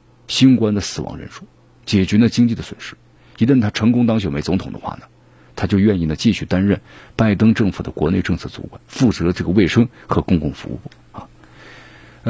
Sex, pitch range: male, 90-120 Hz